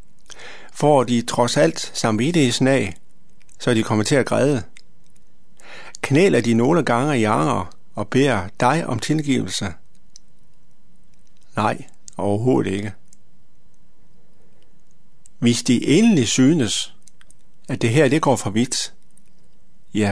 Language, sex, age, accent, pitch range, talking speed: Danish, male, 60-79, native, 115-145 Hz, 120 wpm